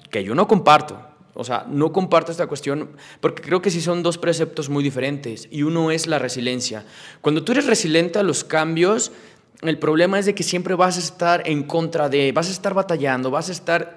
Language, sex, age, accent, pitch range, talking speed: Spanish, male, 30-49, Mexican, 140-180 Hz, 215 wpm